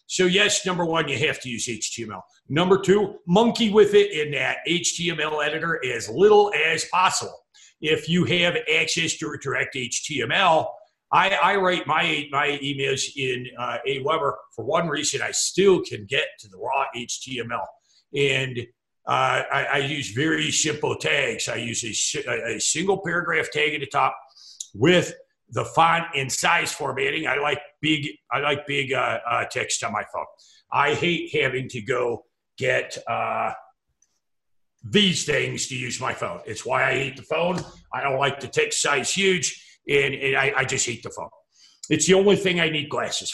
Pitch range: 135-180 Hz